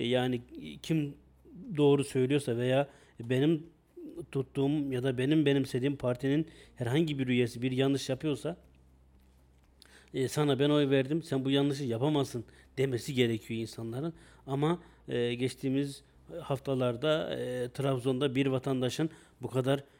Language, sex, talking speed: Turkish, male, 120 wpm